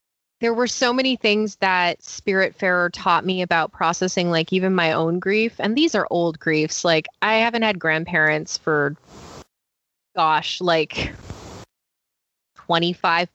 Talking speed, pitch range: 135 wpm, 165-200 Hz